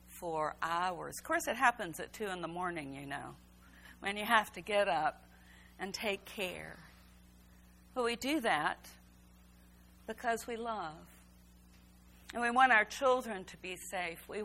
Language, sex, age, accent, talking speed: English, female, 50-69, American, 155 wpm